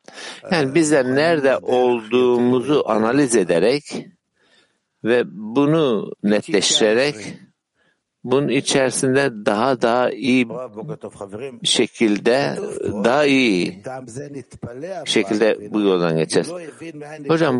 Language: Turkish